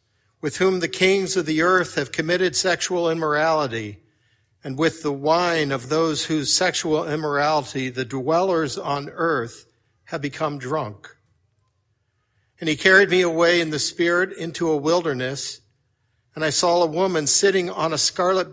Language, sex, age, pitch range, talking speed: English, male, 50-69, 115-170 Hz, 150 wpm